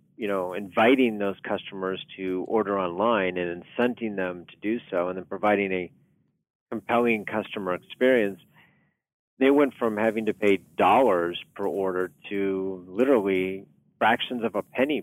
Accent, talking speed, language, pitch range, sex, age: American, 145 wpm, English, 100-135 Hz, male, 40-59